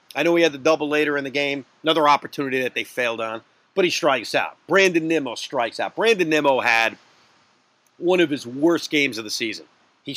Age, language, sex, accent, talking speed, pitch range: 40-59, English, male, American, 210 wpm, 135-180 Hz